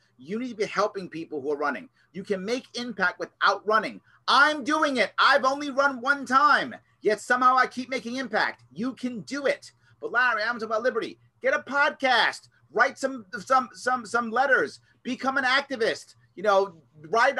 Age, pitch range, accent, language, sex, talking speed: 30-49, 180-260 Hz, American, English, male, 185 wpm